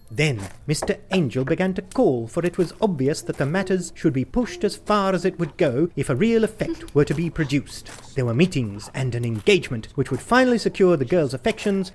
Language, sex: English, male